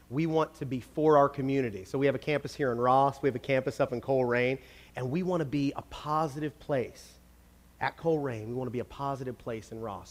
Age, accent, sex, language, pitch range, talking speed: 30-49, American, male, English, 105-140 Hz, 245 wpm